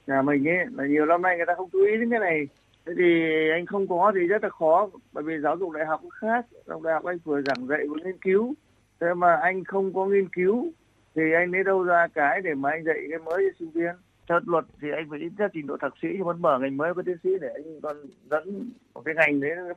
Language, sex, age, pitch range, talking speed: Vietnamese, male, 20-39, 145-180 Hz, 260 wpm